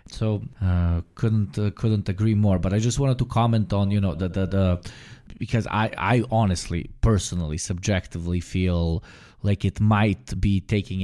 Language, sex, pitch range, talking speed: English, male, 90-110 Hz, 170 wpm